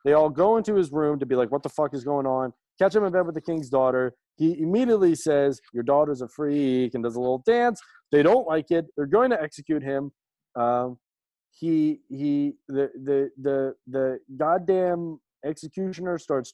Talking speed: 190 wpm